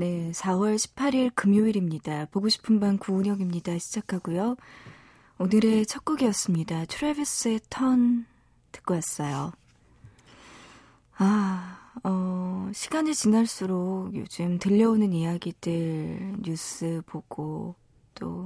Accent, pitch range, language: native, 170-215 Hz, Korean